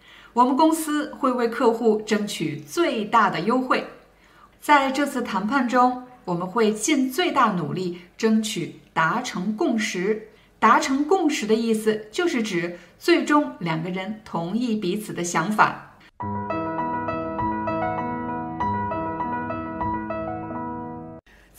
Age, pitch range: 50-69, 185-270 Hz